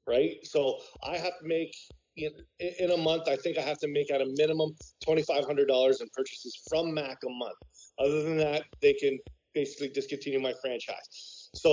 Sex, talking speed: male, 185 wpm